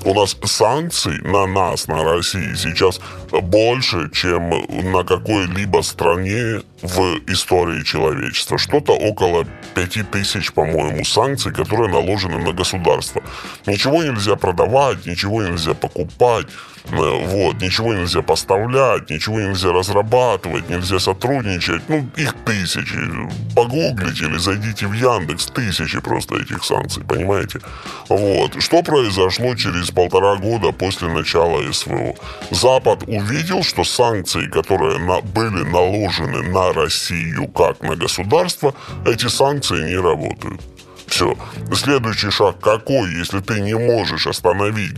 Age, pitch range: 20-39, 90-115 Hz